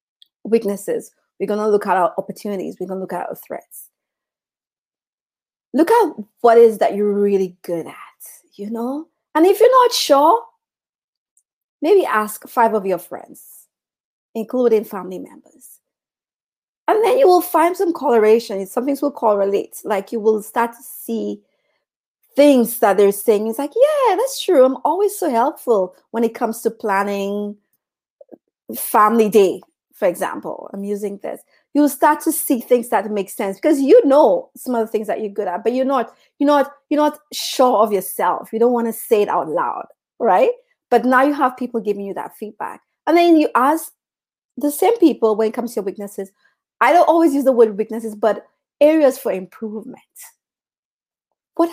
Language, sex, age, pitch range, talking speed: English, female, 30-49, 205-295 Hz, 175 wpm